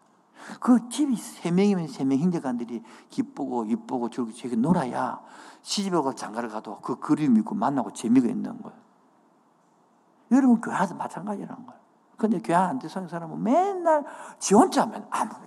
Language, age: Korean, 50-69